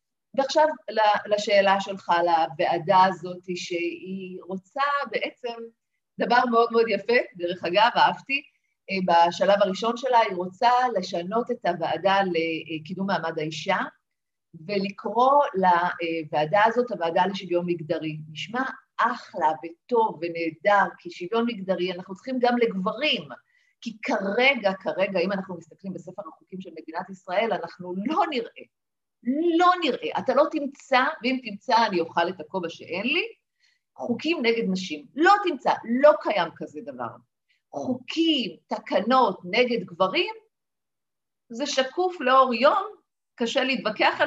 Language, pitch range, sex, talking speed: Hebrew, 185-255 Hz, female, 120 wpm